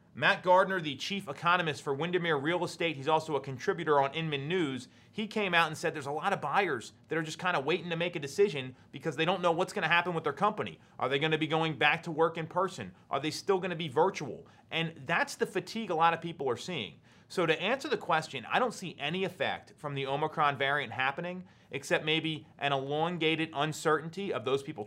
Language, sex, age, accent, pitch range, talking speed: English, male, 30-49, American, 140-180 Hz, 230 wpm